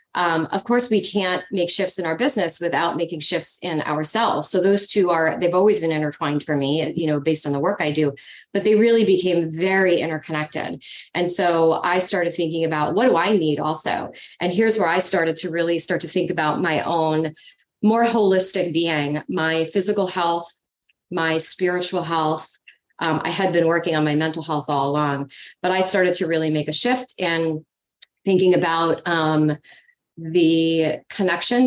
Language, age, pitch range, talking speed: English, 30-49, 155-185 Hz, 185 wpm